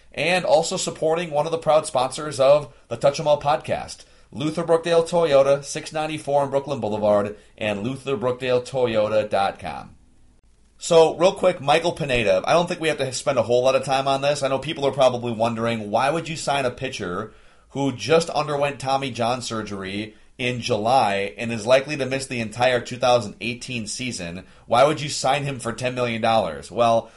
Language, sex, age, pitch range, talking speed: English, male, 30-49, 110-145 Hz, 175 wpm